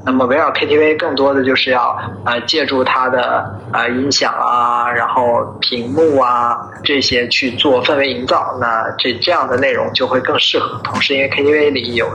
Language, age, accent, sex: Chinese, 20-39, native, male